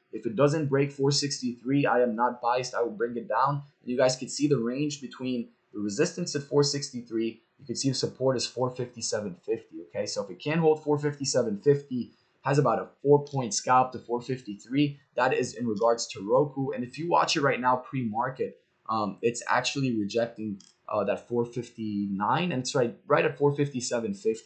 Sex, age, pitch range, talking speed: male, 20-39, 120-145 Hz, 180 wpm